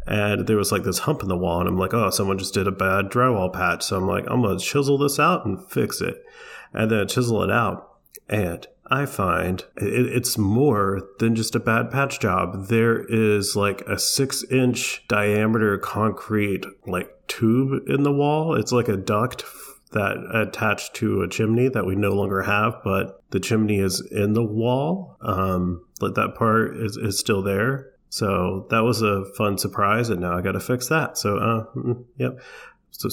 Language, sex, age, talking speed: English, male, 30-49, 195 wpm